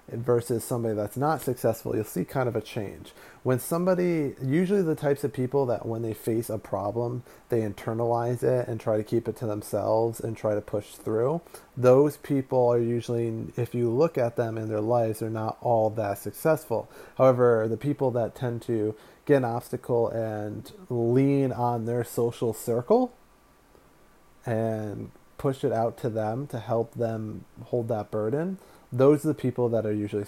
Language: English